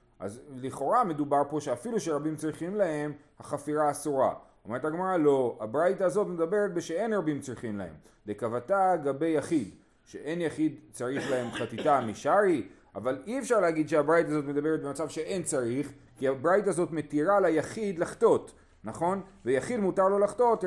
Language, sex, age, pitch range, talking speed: Hebrew, male, 30-49, 135-180 Hz, 145 wpm